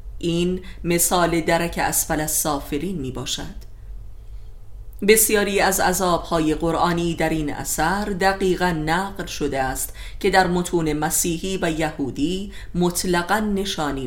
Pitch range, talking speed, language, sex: 145-185 Hz, 110 wpm, Persian, female